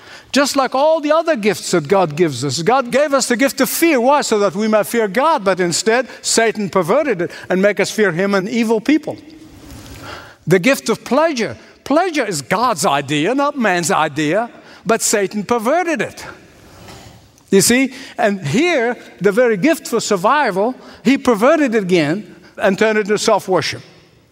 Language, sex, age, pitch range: English, male, 60-79, 165-230 Hz